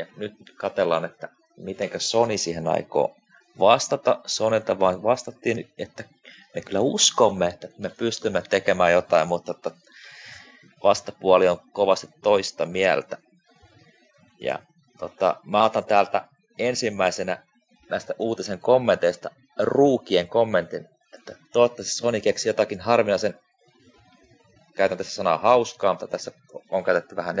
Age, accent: 30-49, native